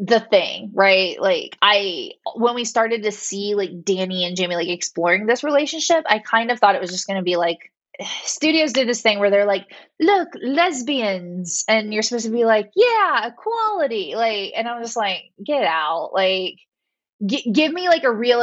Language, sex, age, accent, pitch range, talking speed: English, female, 20-39, American, 185-235 Hz, 190 wpm